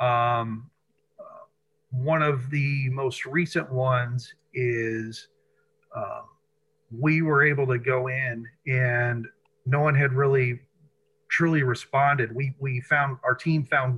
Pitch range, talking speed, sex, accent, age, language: 125-150 Hz, 125 wpm, male, American, 40-59, English